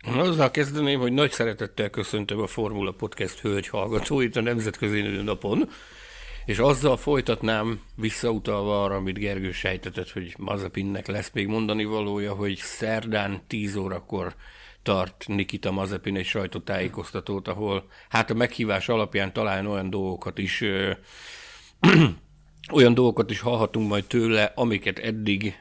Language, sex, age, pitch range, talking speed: Hungarian, male, 60-79, 100-120 Hz, 130 wpm